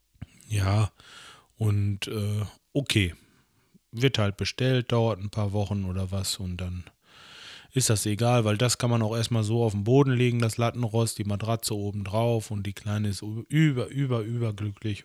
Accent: German